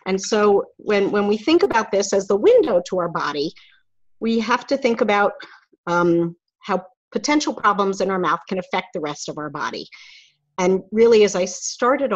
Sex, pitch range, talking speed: female, 170-220 Hz, 190 wpm